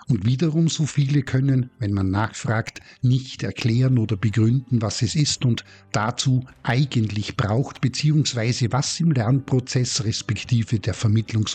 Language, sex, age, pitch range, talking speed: German, male, 50-69, 110-135 Hz, 135 wpm